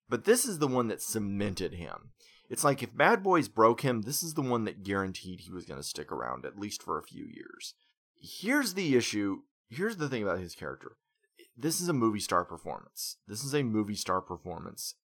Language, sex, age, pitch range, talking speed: English, male, 30-49, 100-135 Hz, 215 wpm